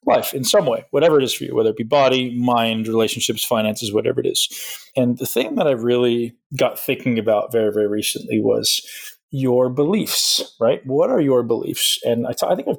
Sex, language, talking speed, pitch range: male, English, 210 wpm, 110-130 Hz